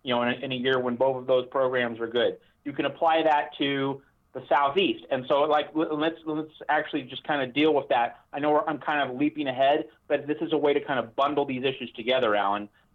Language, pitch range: English, 135-170 Hz